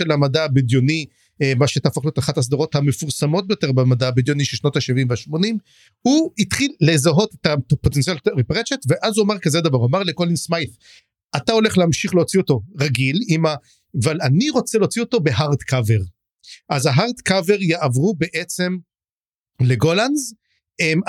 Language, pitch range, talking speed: English, 140-190 Hz, 95 wpm